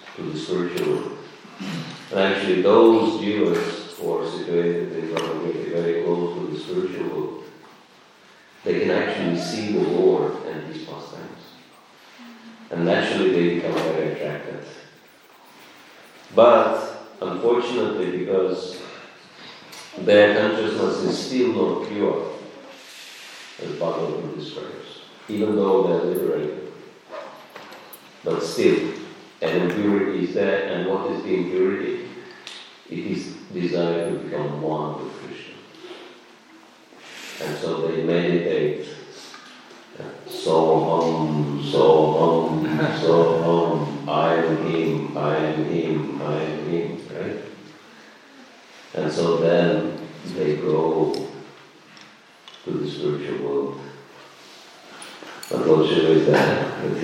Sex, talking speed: male, 110 wpm